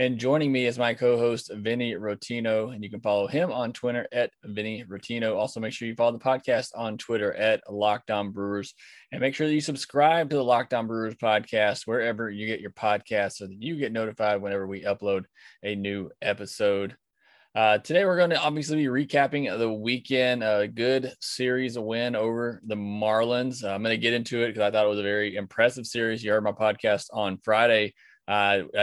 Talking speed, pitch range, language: 205 wpm, 105-130 Hz, English